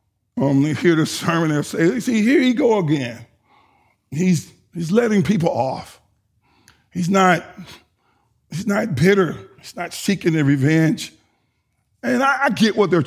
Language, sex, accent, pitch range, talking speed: English, male, American, 140-185 Hz, 150 wpm